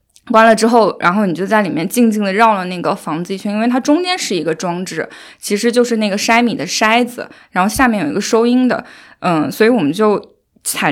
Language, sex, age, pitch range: Chinese, female, 20-39, 190-250 Hz